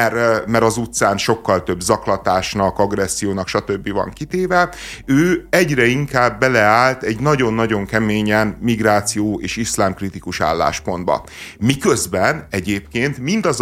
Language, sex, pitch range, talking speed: Hungarian, male, 100-130 Hz, 105 wpm